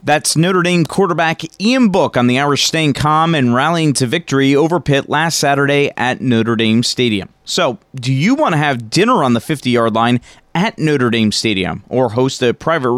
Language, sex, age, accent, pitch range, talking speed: English, male, 30-49, American, 125-175 Hz, 195 wpm